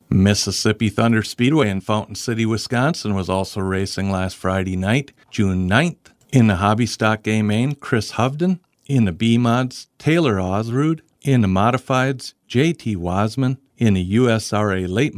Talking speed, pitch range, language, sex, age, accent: 140 wpm, 105-135 Hz, English, male, 50-69, American